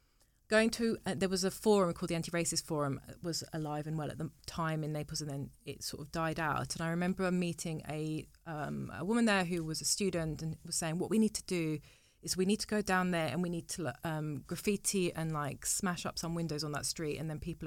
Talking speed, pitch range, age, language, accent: 250 wpm, 155-190 Hz, 30-49, English, British